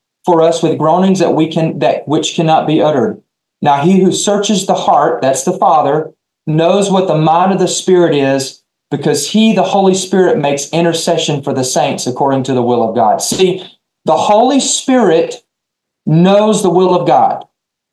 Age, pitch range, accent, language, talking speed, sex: 40-59, 160-215 Hz, American, English, 180 wpm, male